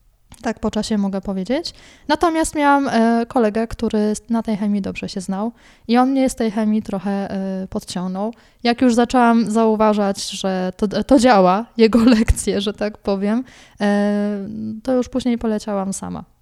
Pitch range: 205-245 Hz